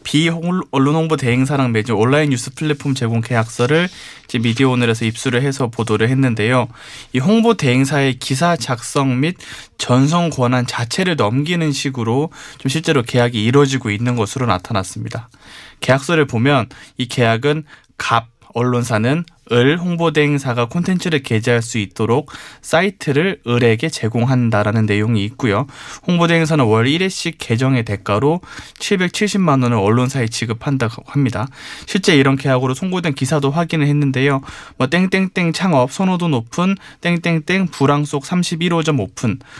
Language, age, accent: Korean, 20-39, native